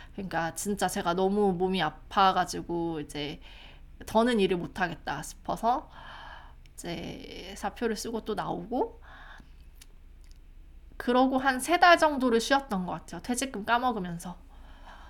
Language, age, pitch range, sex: Korean, 20-39, 175-250 Hz, female